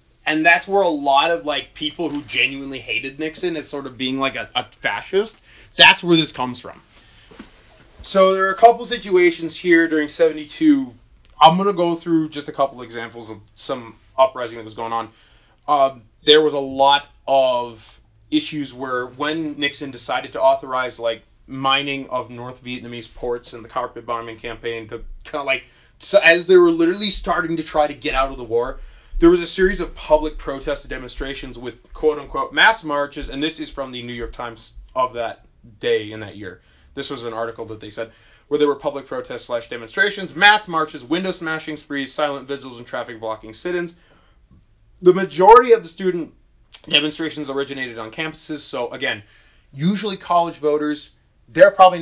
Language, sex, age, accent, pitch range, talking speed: English, male, 20-39, American, 120-165 Hz, 180 wpm